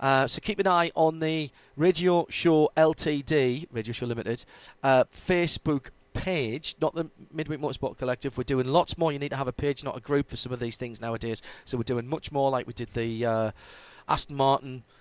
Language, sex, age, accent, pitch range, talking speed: English, male, 40-59, British, 125-155 Hz, 210 wpm